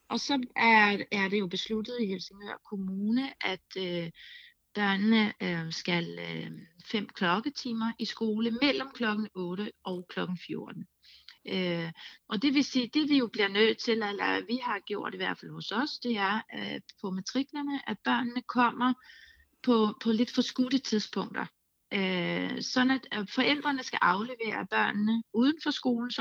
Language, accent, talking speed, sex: Danish, native, 160 wpm, female